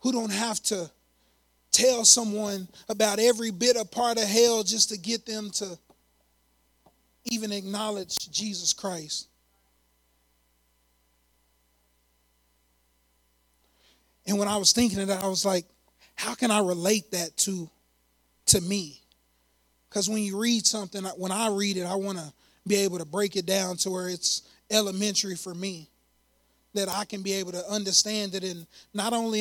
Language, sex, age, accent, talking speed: English, male, 30-49, American, 155 wpm